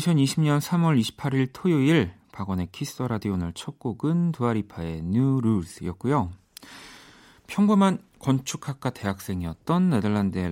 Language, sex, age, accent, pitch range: Korean, male, 40-59, native, 95-130 Hz